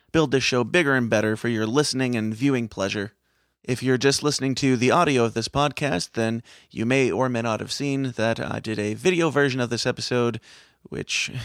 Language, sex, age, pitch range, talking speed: English, male, 30-49, 115-150 Hz, 210 wpm